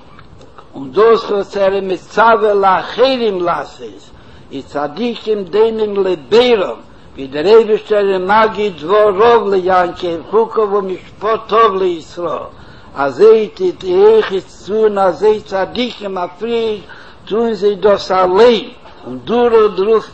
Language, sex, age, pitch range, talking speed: Hebrew, male, 60-79, 190-225 Hz, 105 wpm